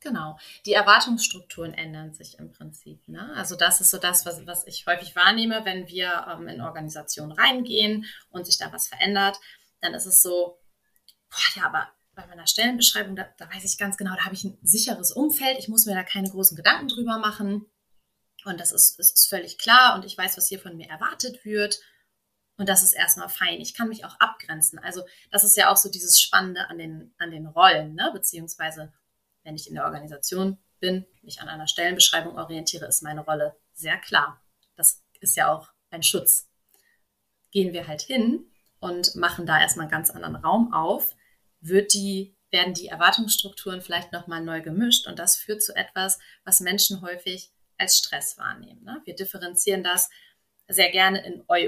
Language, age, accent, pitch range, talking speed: German, 20-39, German, 165-205 Hz, 190 wpm